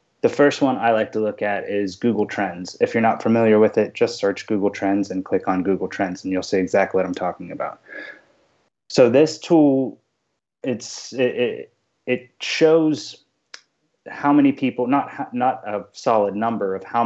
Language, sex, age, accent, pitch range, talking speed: English, male, 20-39, American, 95-120 Hz, 180 wpm